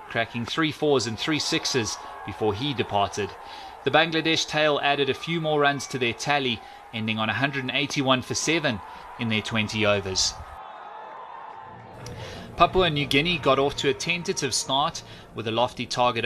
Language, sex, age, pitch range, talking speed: English, male, 30-49, 115-140 Hz, 155 wpm